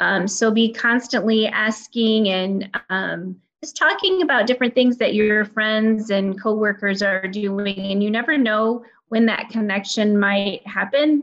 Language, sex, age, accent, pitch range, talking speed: English, female, 20-39, American, 195-225 Hz, 150 wpm